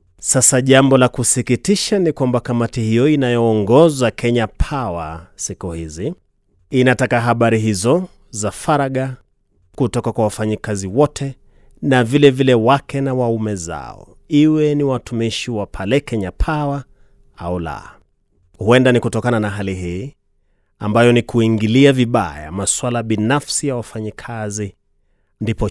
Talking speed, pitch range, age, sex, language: 125 wpm, 100-130 Hz, 30-49, male, Swahili